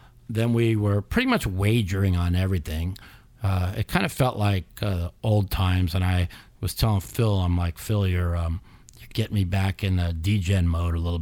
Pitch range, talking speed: 95-115 Hz, 195 wpm